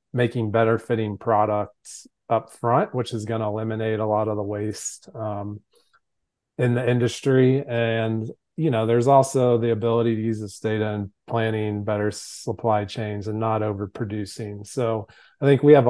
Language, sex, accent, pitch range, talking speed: English, male, American, 105-125 Hz, 165 wpm